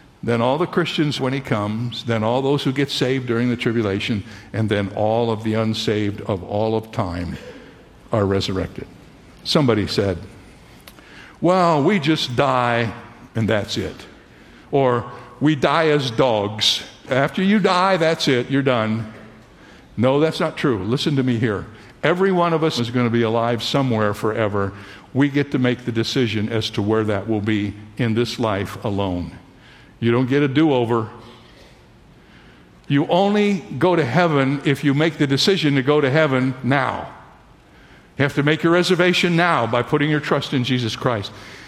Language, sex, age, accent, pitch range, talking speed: English, male, 60-79, American, 110-145 Hz, 170 wpm